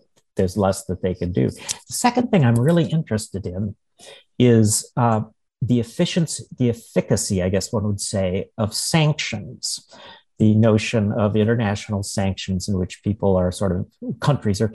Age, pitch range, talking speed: 50-69, 100-125 Hz, 160 wpm